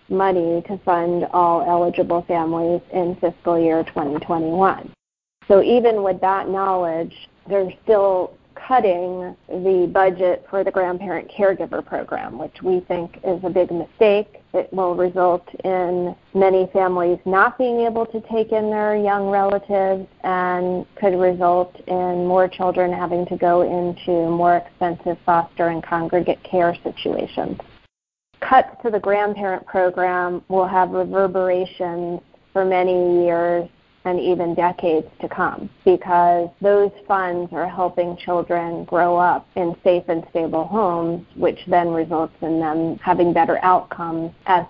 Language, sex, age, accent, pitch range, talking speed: English, female, 30-49, American, 175-190 Hz, 135 wpm